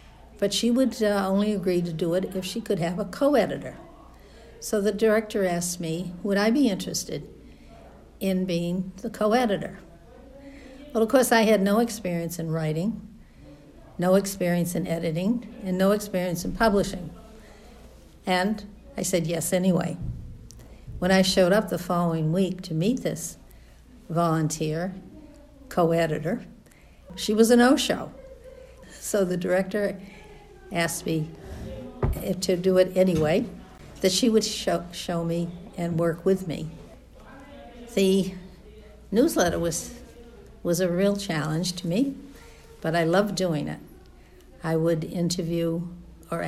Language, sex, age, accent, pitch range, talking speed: English, female, 60-79, American, 170-210 Hz, 135 wpm